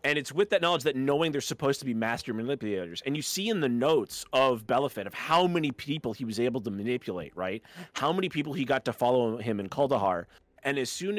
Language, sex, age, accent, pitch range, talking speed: English, male, 30-49, American, 115-150 Hz, 235 wpm